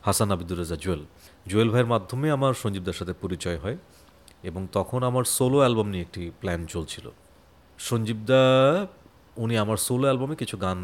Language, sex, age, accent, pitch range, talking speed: Bengali, male, 40-59, native, 90-120 Hz, 145 wpm